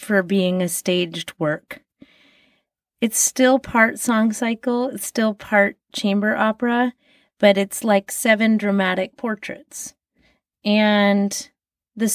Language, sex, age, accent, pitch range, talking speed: English, female, 30-49, American, 185-250 Hz, 115 wpm